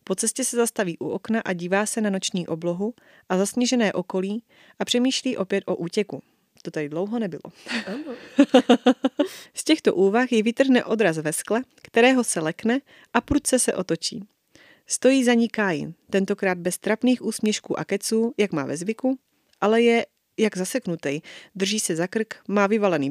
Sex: female